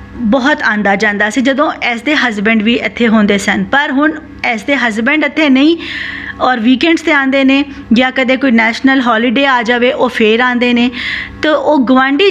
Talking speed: 185 wpm